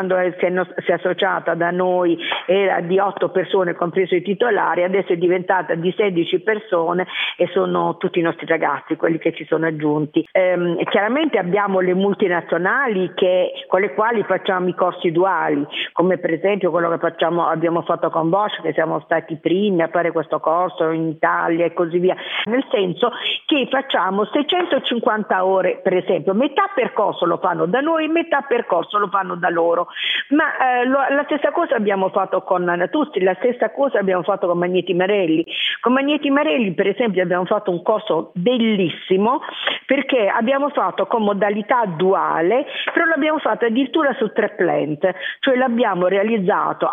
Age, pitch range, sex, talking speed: 50-69, 175-230 Hz, female, 165 wpm